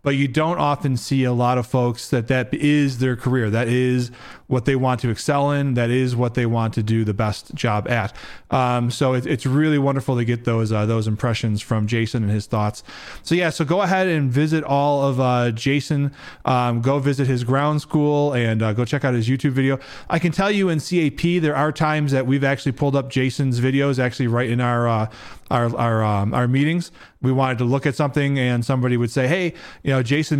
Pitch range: 125-150 Hz